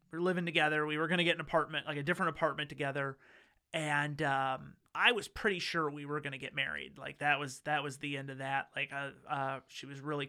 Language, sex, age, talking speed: English, male, 30-49, 245 wpm